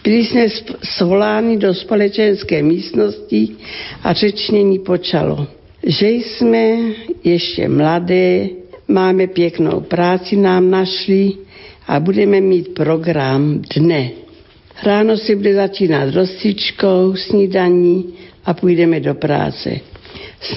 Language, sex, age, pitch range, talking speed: Slovak, female, 60-79, 170-205 Hz, 100 wpm